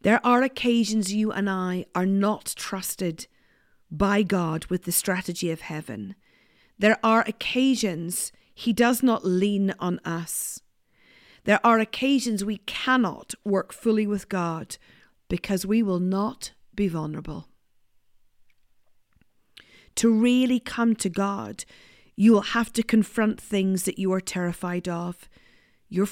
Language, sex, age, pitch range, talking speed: English, female, 40-59, 170-230 Hz, 130 wpm